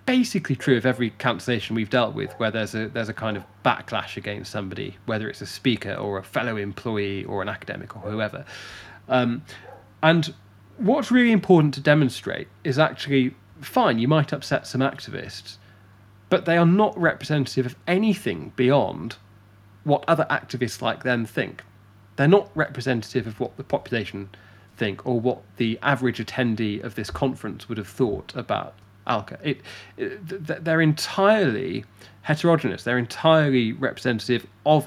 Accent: British